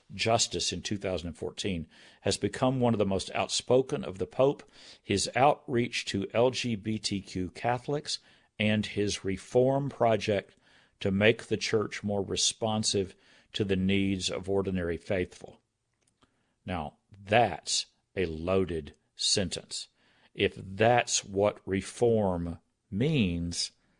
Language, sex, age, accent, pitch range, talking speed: English, male, 50-69, American, 90-115 Hz, 110 wpm